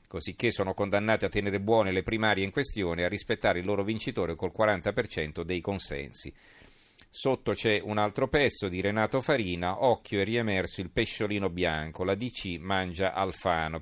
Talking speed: 165 wpm